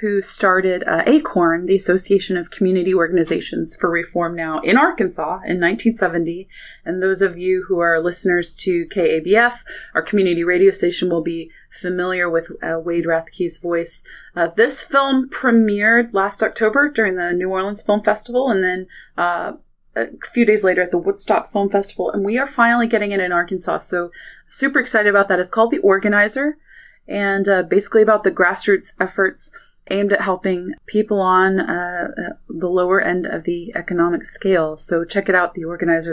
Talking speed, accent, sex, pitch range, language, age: 175 wpm, American, female, 175-220 Hz, English, 20-39